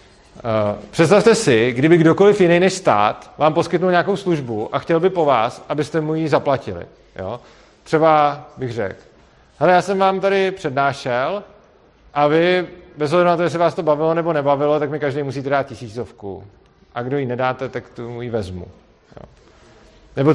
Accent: native